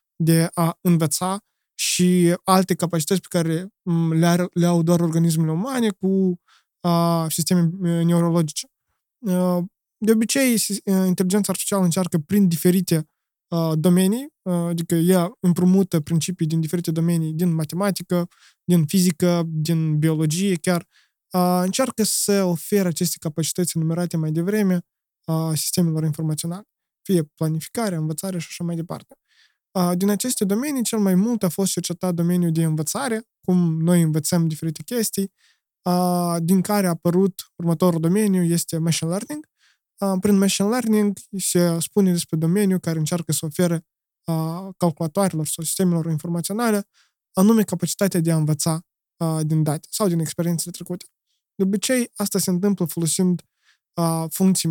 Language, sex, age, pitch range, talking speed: Romanian, male, 20-39, 165-190 Hz, 130 wpm